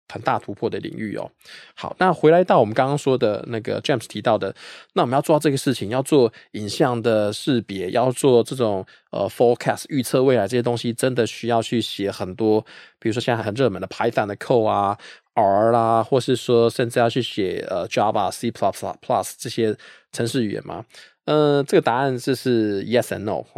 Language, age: Chinese, 20-39